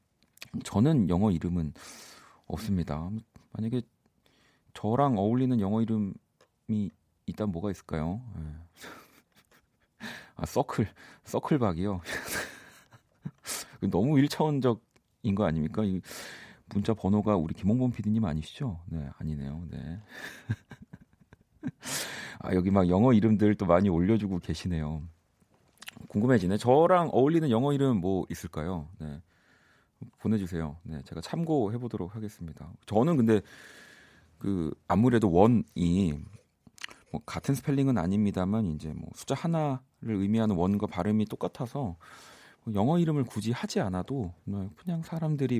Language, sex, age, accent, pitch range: Korean, male, 40-59, native, 90-120 Hz